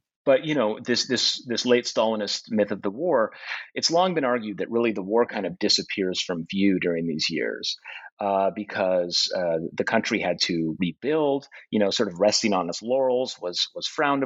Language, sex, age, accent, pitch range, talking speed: English, male, 30-49, American, 95-125 Hz, 200 wpm